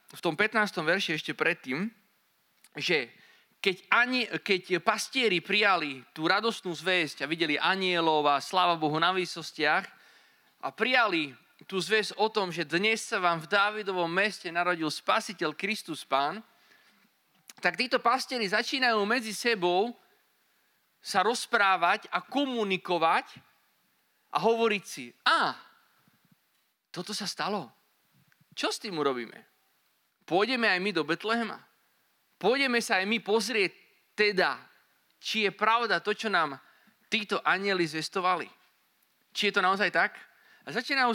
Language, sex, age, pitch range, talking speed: Slovak, male, 30-49, 175-225 Hz, 125 wpm